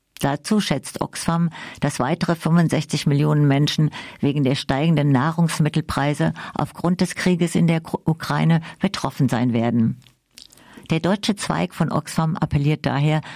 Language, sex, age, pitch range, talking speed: German, female, 50-69, 140-165 Hz, 125 wpm